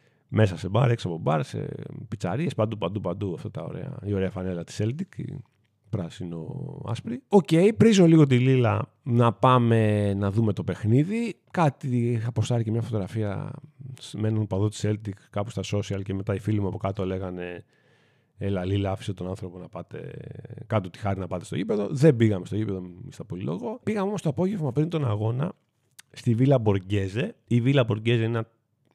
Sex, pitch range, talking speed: male, 100-140 Hz, 185 wpm